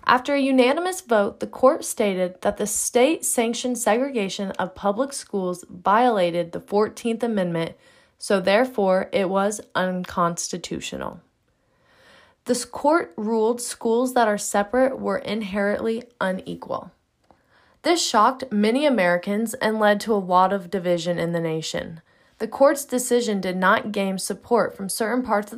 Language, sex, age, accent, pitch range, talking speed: English, female, 20-39, American, 185-245 Hz, 135 wpm